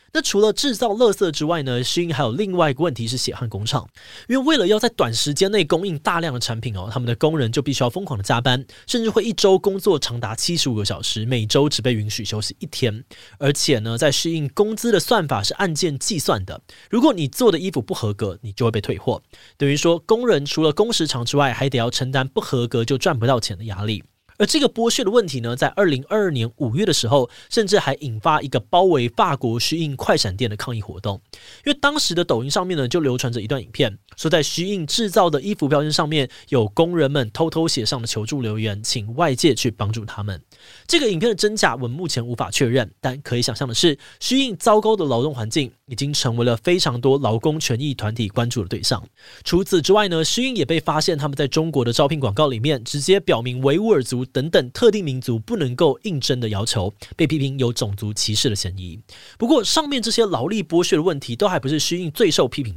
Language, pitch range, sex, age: Chinese, 120-175 Hz, male, 20-39